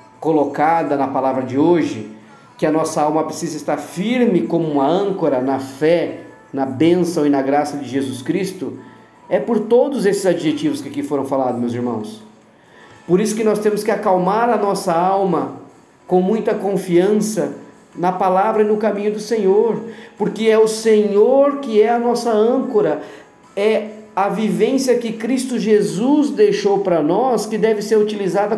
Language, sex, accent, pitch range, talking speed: Portuguese, male, Brazilian, 165-220 Hz, 165 wpm